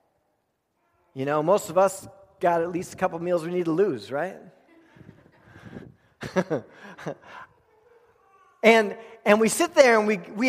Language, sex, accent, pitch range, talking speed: English, male, American, 150-230 Hz, 135 wpm